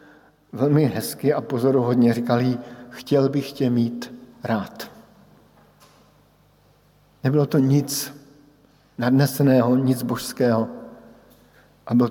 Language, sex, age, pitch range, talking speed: Slovak, male, 50-69, 120-150 Hz, 90 wpm